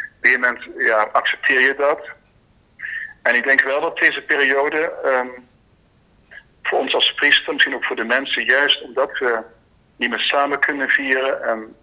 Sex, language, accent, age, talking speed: male, Dutch, Dutch, 50-69, 155 wpm